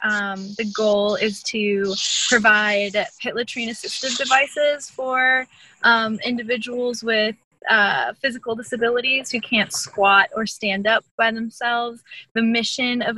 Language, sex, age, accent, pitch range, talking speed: English, female, 10-29, American, 205-235 Hz, 125 wpm